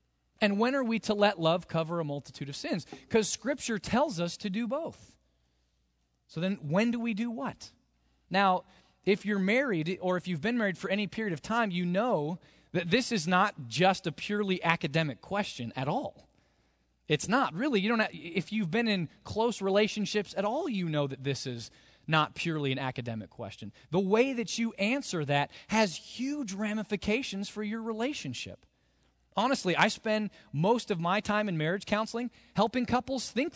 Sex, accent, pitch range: male, American, 145-210 Hz